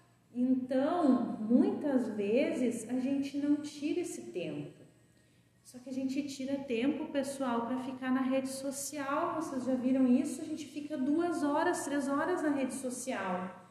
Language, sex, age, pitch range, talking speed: Portuguese, female, 30-49, 235-290 Hz, 155 wpm